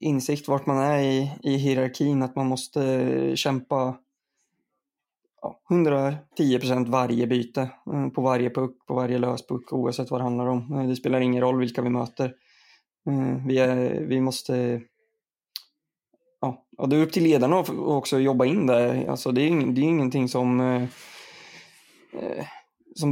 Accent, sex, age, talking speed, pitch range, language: native, male, 20-39, 150 wpm, 125-140 Hz, Swedish